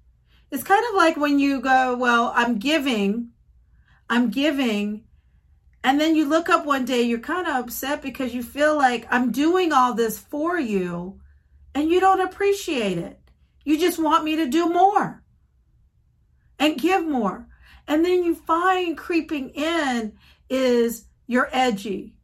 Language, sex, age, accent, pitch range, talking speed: English, female, 40-59, American, 215-295 Hz, 155 wpm